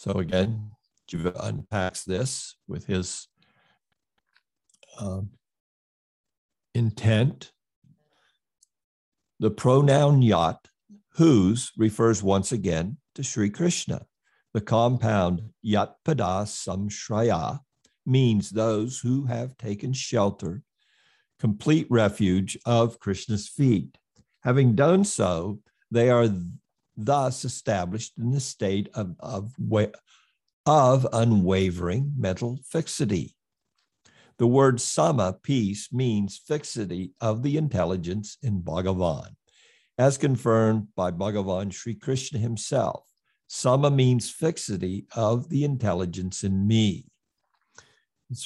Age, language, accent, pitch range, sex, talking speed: 60-79, English, American, 100-130 Hz, male, 95 wpm